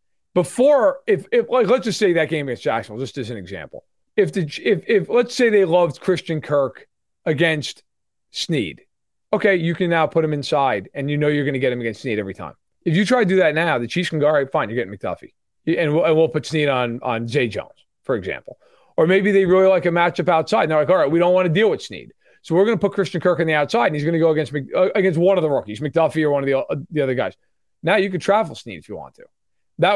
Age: 40-59